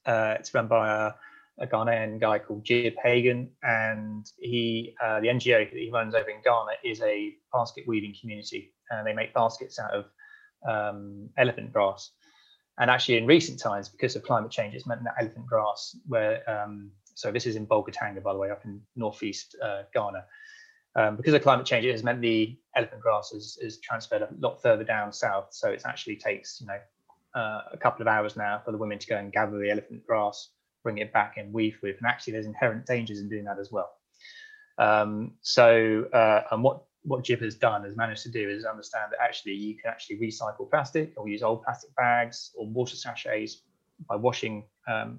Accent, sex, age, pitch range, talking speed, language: British, male, 20-39, 105-125 Hz, 205 wpm, English